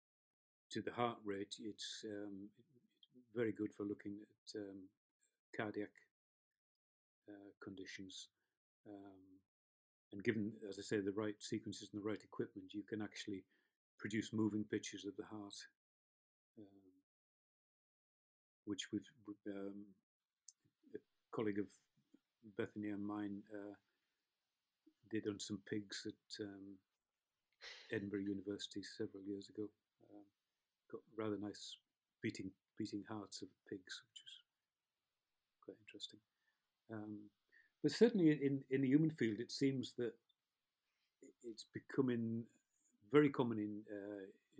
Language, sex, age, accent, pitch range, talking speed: English, male, 40-59, British, 100-110 Hz, 120 wpm